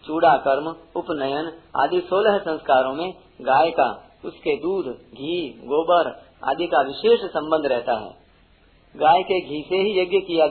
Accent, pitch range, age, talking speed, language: native, 140-185 Hz, 50-69, 150 wpm, Hindi